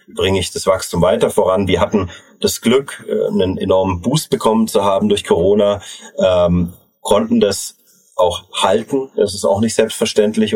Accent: German